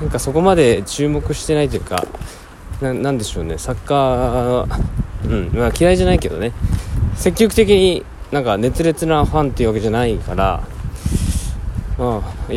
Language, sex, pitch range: Japanese, male, 90-130 Hz